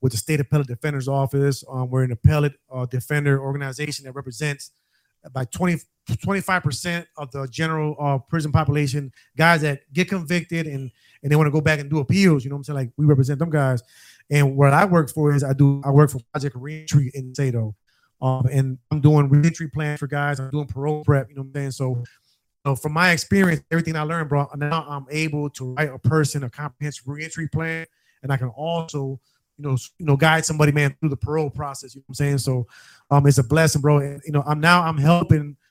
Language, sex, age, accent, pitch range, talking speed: English, male, 30-49, American, 140-160 Hz, 225 wpm